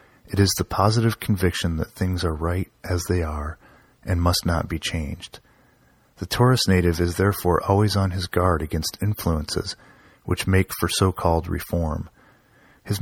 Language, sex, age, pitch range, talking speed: English, male, 30-49, 85-100 Hz, 155 wpm